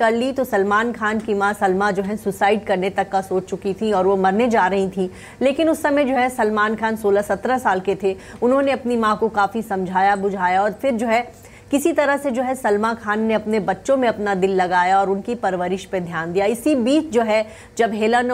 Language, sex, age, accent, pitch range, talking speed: English, female, 30-49, Indian, 200-240 Hz, 225 wpm